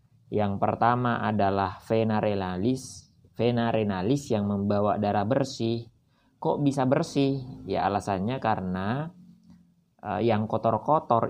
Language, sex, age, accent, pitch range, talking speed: Indonesian, male, 20-39, native, 105-130 Hz, 105 wpm